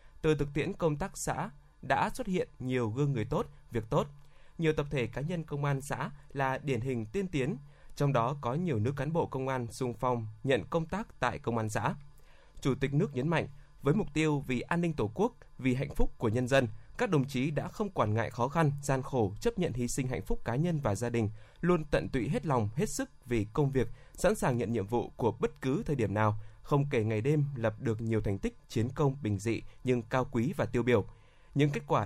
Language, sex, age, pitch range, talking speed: Vietnamese, male, 20-39, 115-150 Hz, 245 wpm